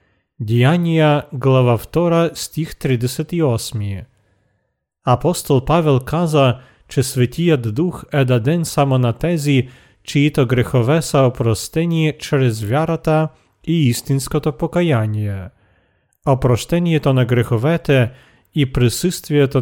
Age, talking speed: 40-59, 90 wpm